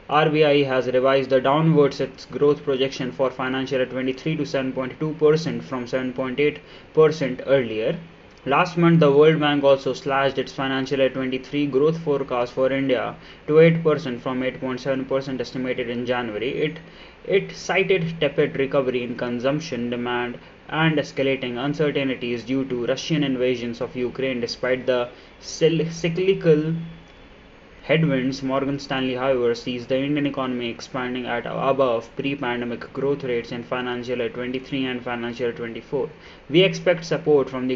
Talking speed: 135 wpm